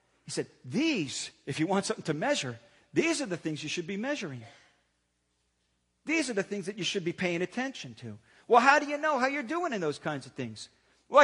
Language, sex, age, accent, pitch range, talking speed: English, male, 50-69, American, 175-235 Hz, 225 wpm